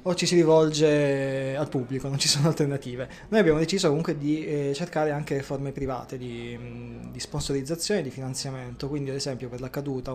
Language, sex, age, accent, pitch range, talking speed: Italian, male, 20-39, native, 130-150 Hz, 185 wpm